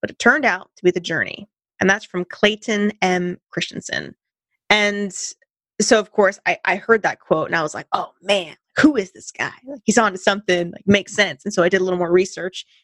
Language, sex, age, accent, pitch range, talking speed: English, female, 30-49, American, 180-210 Hz, 225 wpm